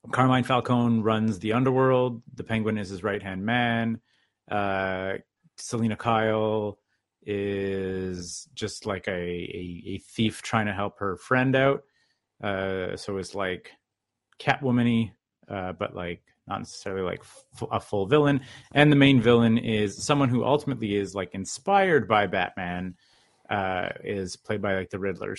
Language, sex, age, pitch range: English, male, 30-49, 95-120 Hz